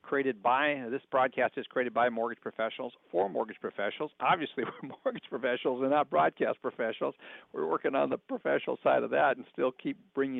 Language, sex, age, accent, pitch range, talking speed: English, male, 60-79, American, 115-140 Hz, 185 wpm